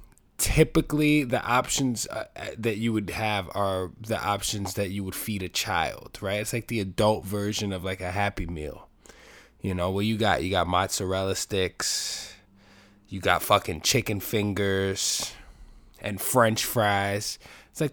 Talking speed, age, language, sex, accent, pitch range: 155 wpm, 20-39, English, male, American, 95-120 Hz